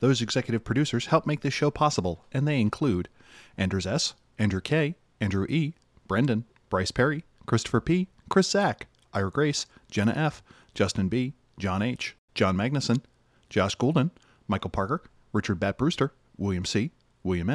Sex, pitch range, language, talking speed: male, 100-130 Hz, English, 150 wpm